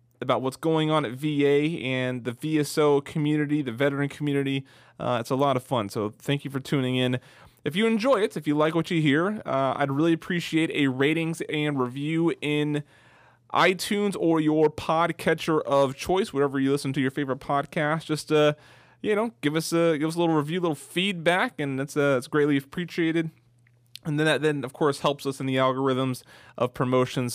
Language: English